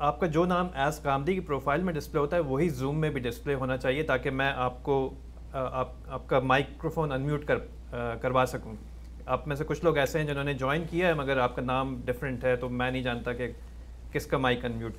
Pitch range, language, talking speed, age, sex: 110-145 Hz, Urdu, 230 wpm, 30-49, male